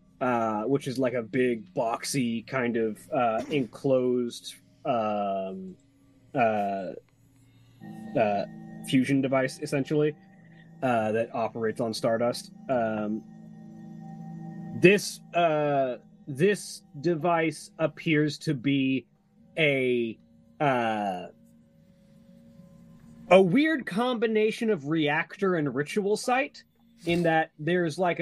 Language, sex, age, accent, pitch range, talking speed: English, male, 30-49, American, 120-165 Hz, 95 wpm